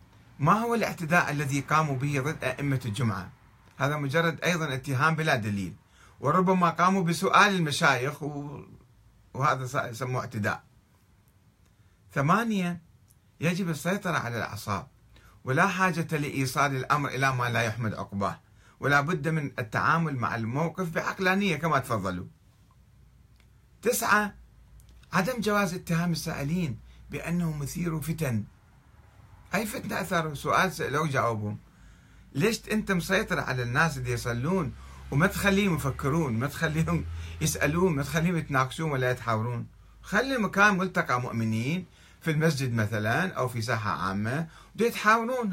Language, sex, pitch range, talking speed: Arabic, male, 115-170 Hz, 115 wpm